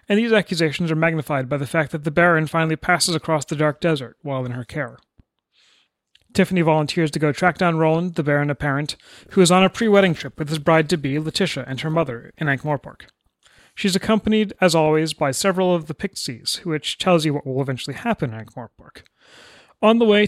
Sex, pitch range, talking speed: male, 145-185 Hz, 200 wpm